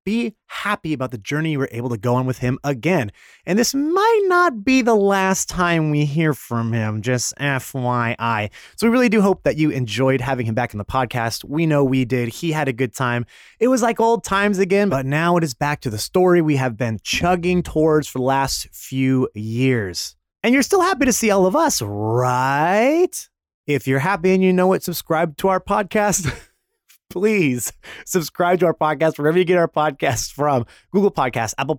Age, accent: 30-49, American